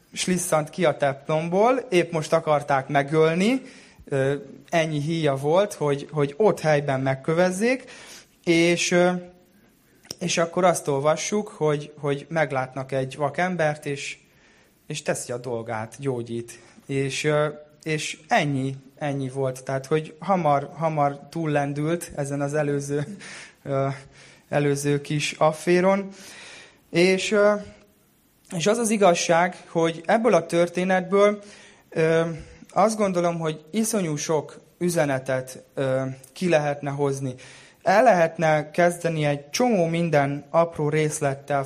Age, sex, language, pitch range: 20-39, male, Hungarian, 140-175 Hz